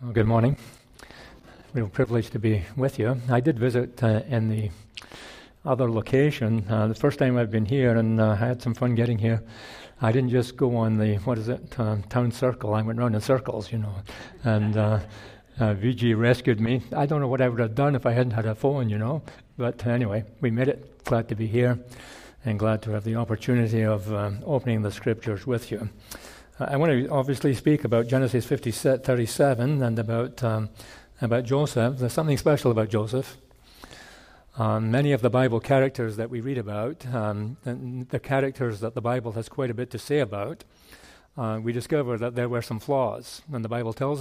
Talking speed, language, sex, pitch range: 200 wpm, English, male, 110-135 Hz